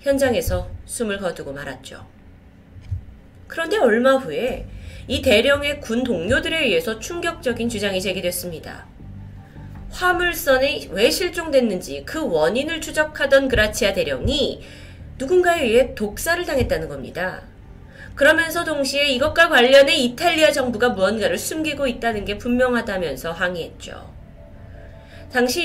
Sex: female